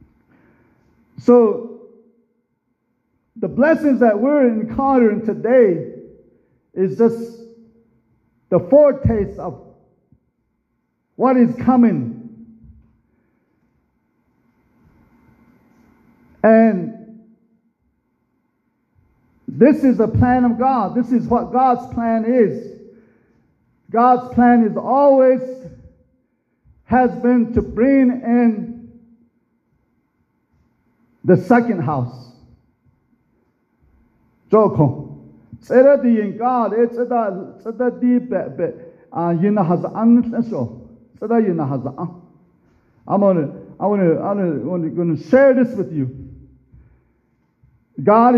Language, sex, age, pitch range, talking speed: English, male, 50-69, 175-240 Hz, 90 wpm